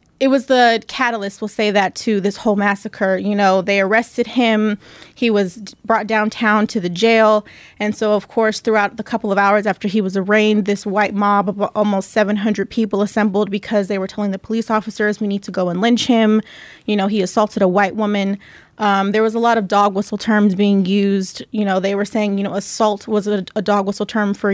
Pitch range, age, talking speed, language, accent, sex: 200-220 Hz, 20-39, 225 wpm, English, American, female